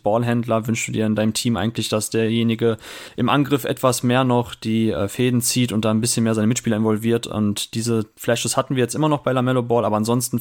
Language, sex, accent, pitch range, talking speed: German, male, German, 115-130 Hz, 225 wpm